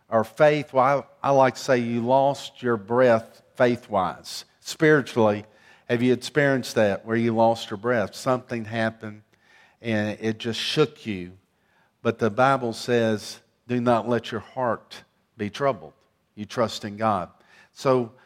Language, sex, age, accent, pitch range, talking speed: English, male, 50-69, American, 115-140 Hz, 140 wpm